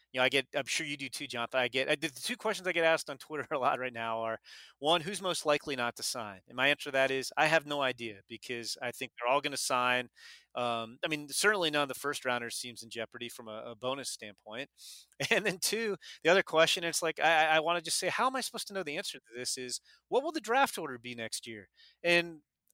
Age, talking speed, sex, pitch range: 30-49, 270 wpm, male, 125-165 Hz